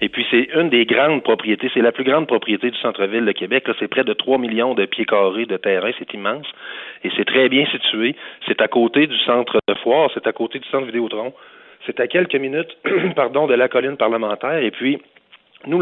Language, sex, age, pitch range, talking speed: French, male, 30-49, 105-135 Hz, 225 wpm